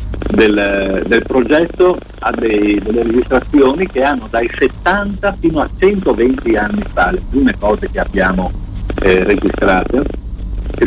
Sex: male